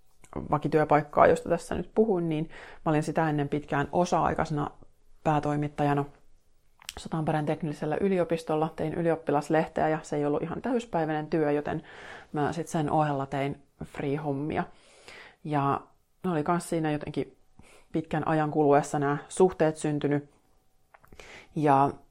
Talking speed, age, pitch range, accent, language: 120 wpm, 30-49, 140-160 Hz, native, Finnish